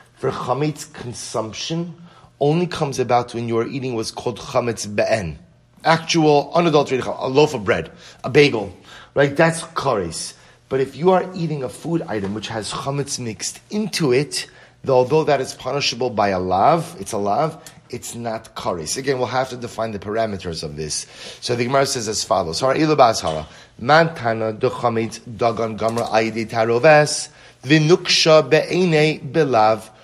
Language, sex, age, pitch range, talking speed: English, male, 30-49, 110-150 Hz, 140 wpm